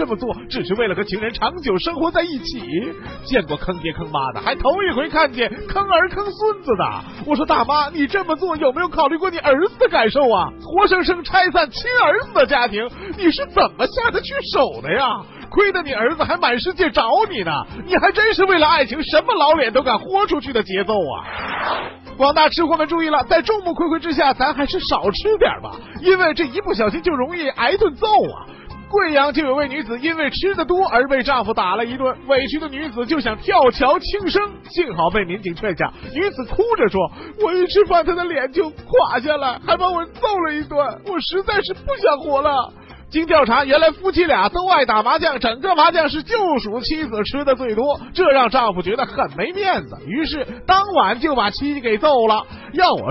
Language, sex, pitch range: Chinese, male, 260-370 Hz